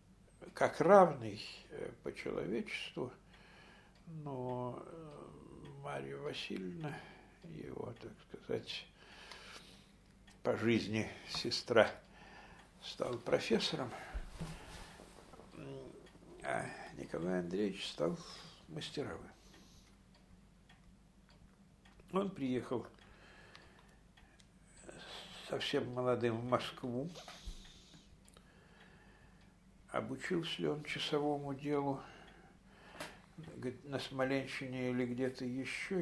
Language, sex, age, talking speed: Russian, male, 60-79, 60 wpm